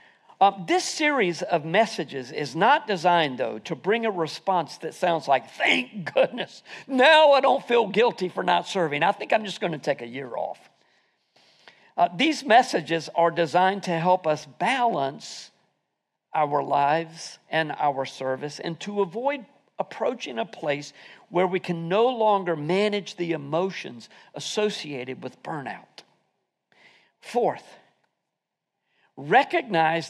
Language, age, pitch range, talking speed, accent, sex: English, 50-69, 160-235 Hz, 140 wpm, American, male